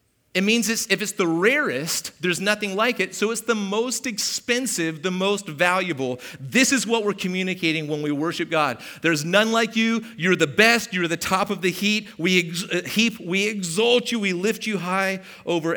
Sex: male